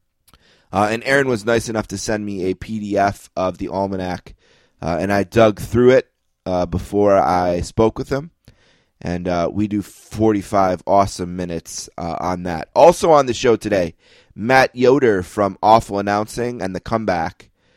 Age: 30-49